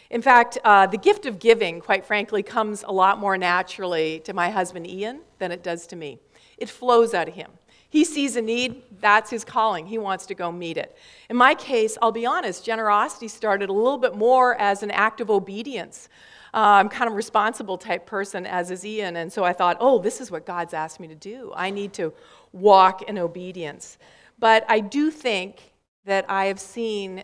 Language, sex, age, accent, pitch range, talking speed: English, female, 50-69, American, 175-230 Hz, 210 wpm